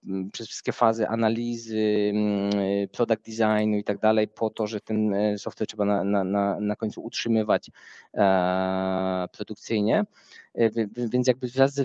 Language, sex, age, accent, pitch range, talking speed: Polish, male, 20-39, native, 100-115 Hz, 120 wpm